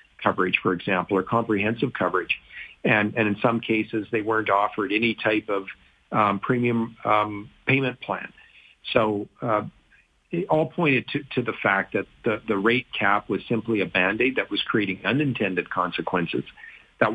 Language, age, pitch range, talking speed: English, 50-69, 100-125 Hz, 160 wpm